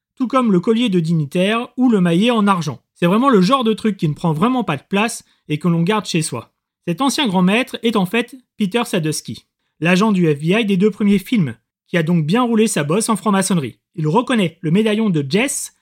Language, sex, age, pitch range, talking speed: French, male, 30-49, 175-235 Hz, 230 wpm